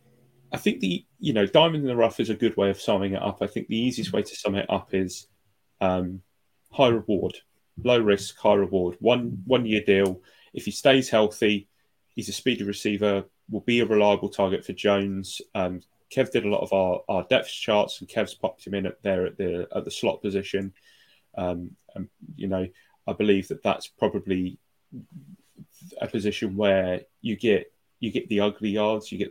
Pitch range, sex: 95-115 Hz, male